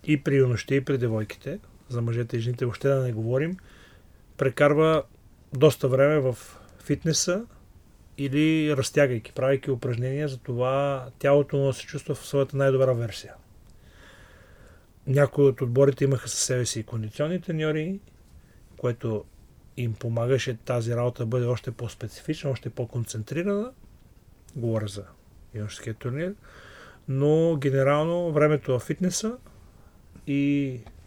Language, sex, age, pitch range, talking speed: Bulgarian, male, 40-59, 115-145 Hz, 125 wpm